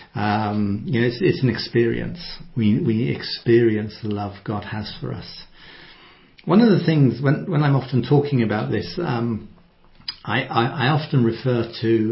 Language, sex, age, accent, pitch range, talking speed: English, male, 60-79, British, 110-165 Hz, 170 wpm